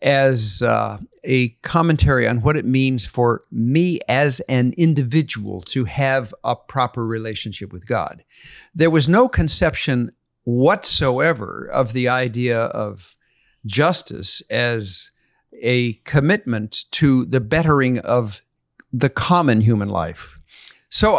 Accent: American